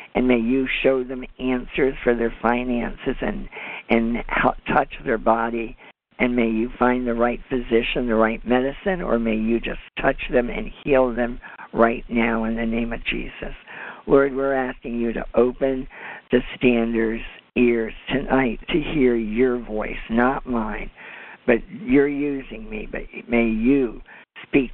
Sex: male